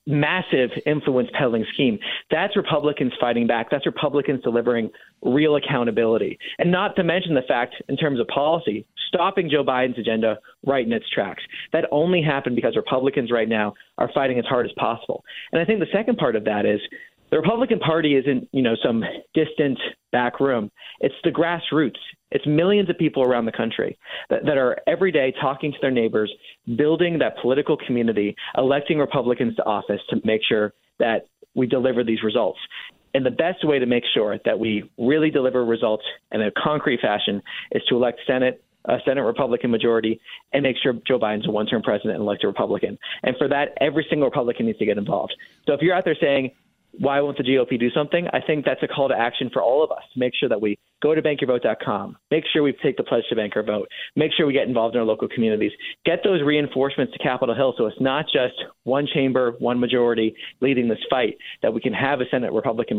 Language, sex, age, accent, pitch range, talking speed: English, male, 30-49, American, 120-150 Hz, 205 wpm